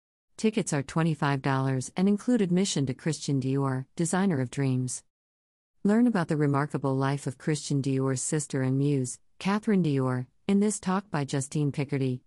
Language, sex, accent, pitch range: English, female, American, 130-170 Hz